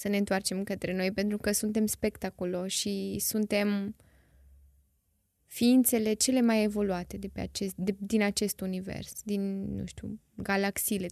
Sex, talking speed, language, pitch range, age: female, 140 wpm, Romanian, 190-215 Hz, 10-29